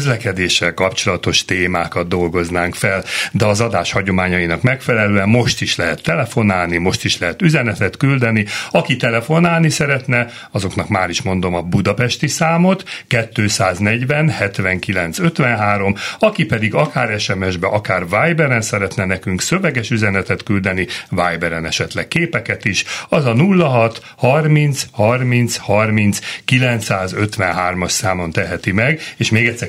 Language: Hungarian